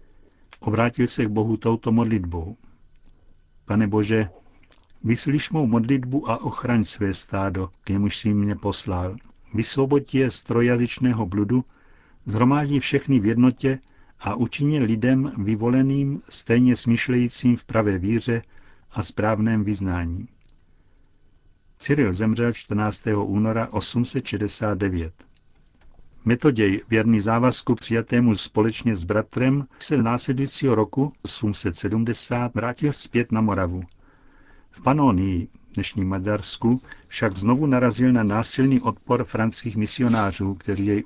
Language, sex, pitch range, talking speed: Czech, male, 100-125 Hz, 115 wpm